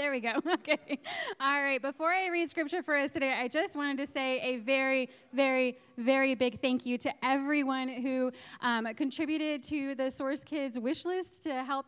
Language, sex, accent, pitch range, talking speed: English, female, American, 210-275 Hz, 190 wpm